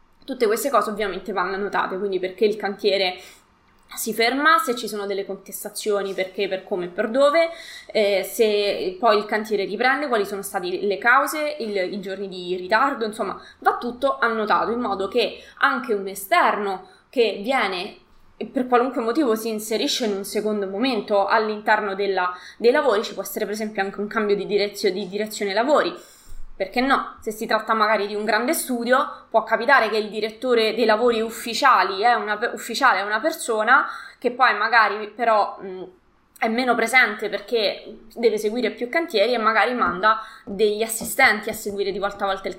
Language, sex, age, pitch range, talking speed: Italian, female, 20-39, 205-240 Hz, 175 wpm